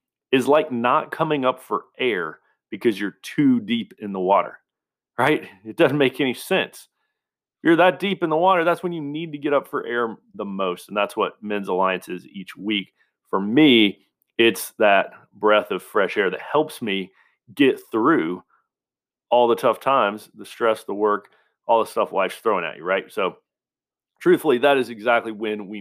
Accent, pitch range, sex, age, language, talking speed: American, 105-150 Hz, male, 40-59, English, 190 wpm